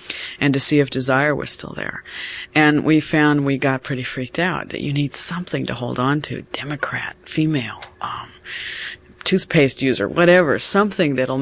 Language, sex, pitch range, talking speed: English, female, 130-155 Hz, 170 wpm